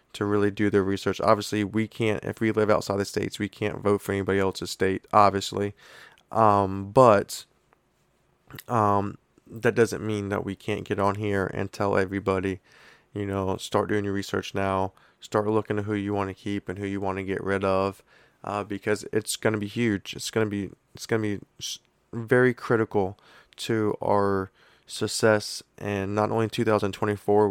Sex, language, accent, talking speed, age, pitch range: male, English, American, 185 wpm, 20-39, 100-115 Hz